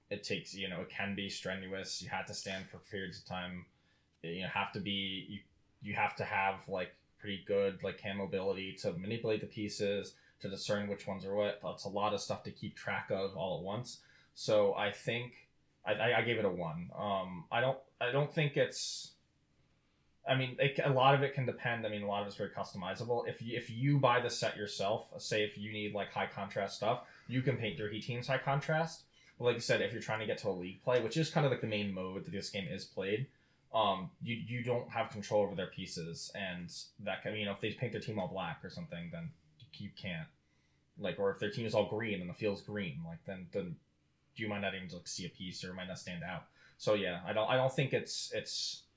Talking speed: 250 wpm